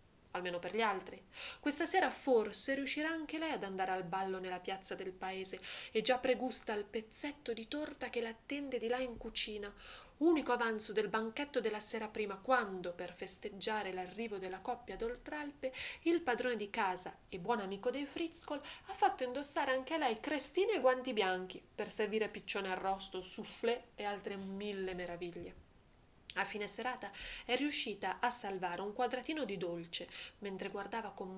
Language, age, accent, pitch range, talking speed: Italian, 30-49, native, 185-245 Hz, 170 wpm